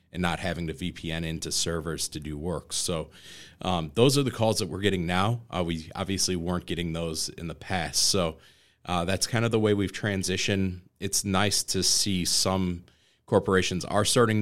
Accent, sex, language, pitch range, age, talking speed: American, male, English, 85-100 Hz, 30-49, 190 wpm